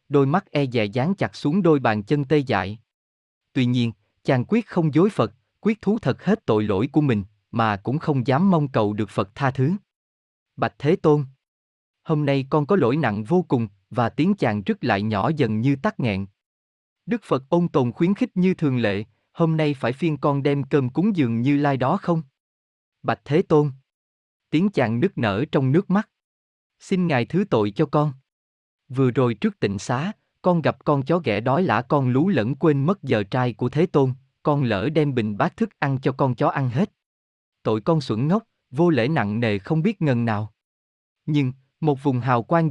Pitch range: 115-160 Hz